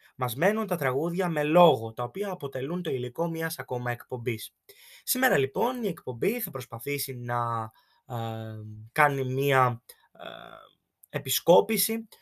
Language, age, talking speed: Greek, 20-39, 110 wpm